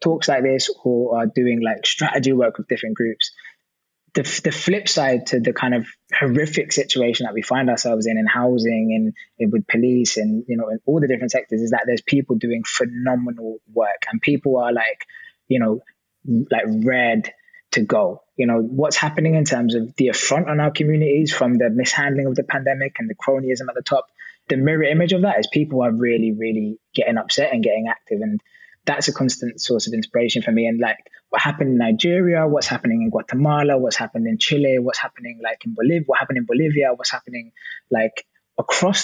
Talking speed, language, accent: 205 wpm, English, British